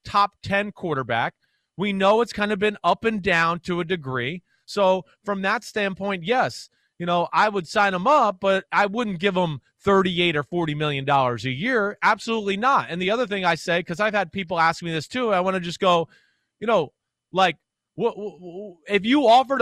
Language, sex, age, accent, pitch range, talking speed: English, male, 30-49, American, 160-215 Hz, 210 wpm